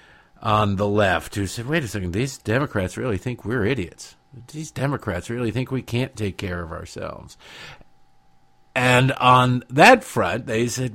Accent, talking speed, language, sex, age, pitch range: American, 165 wpm, English, male, 50-69, 95-130 Hz